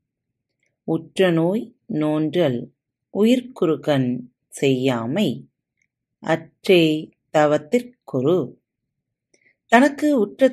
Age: 30-49